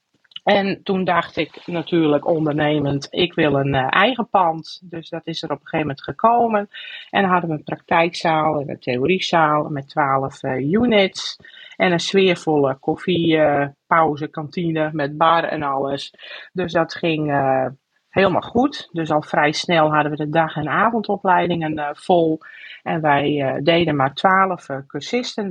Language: Dutch